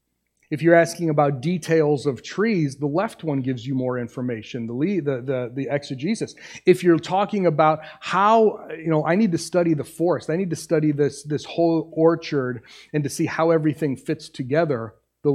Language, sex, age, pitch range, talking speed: English, male, 30-49, 135-170 Hz, 190 wpm